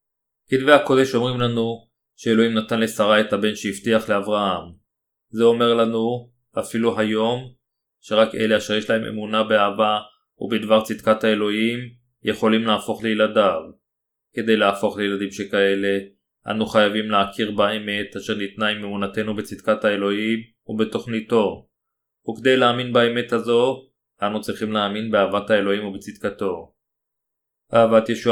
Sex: male